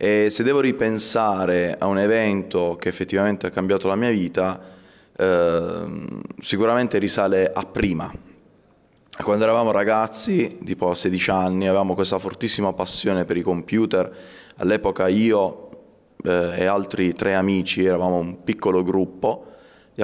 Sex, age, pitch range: male, 20-39, 95-110 Hz